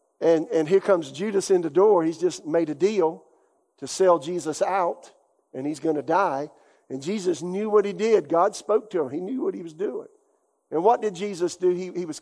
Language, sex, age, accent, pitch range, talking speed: English, male, 50-69, American, 175-240 Hz, 225 wpm